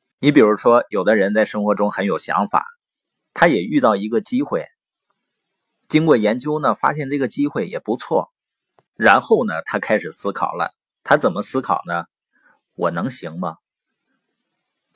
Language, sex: Chinese, male